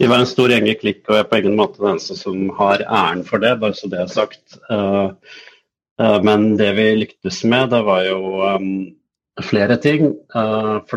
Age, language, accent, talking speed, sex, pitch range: 30-49, English, Norwegian, 190 wpm, male, 95-110 Hz